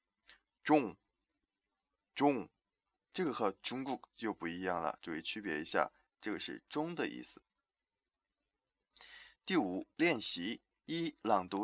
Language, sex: Chinese, male